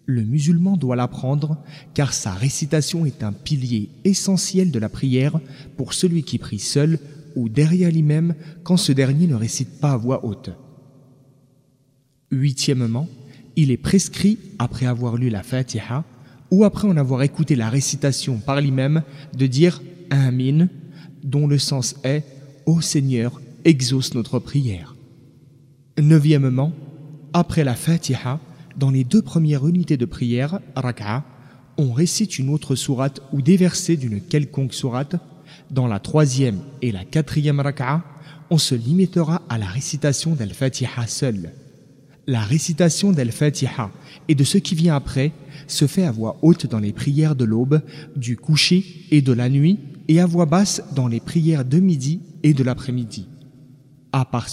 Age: 30-49